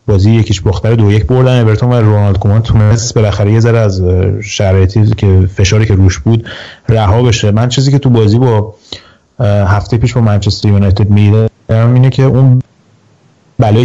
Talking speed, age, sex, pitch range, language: 170 wpm, 30-49, male, 100-125 Hz, Persian